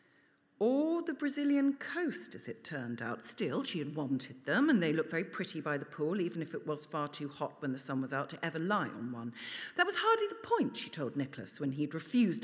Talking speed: 235 wpm